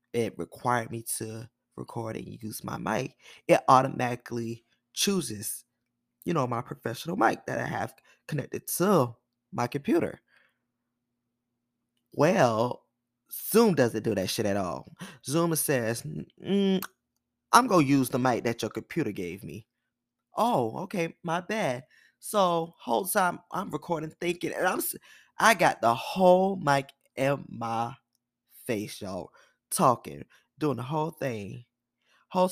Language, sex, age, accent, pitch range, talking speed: English, male, 20-39, American, 120-165 Hz, 135 wpm